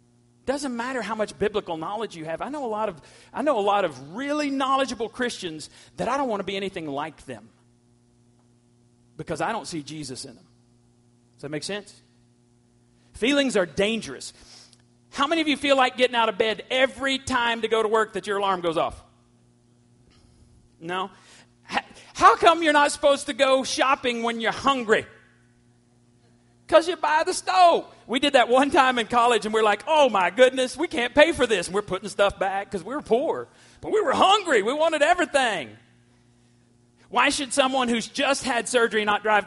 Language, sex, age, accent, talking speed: English, male, 40-59, American, 190 wpm